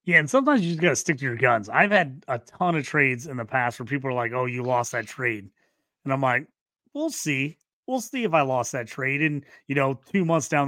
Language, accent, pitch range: English, American, 130-165 Hz